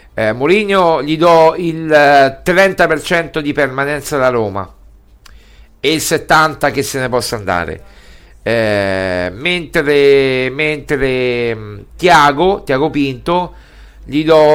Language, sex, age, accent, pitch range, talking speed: Italian, male, 50-69, native, 115-165 Hz, 105 wpm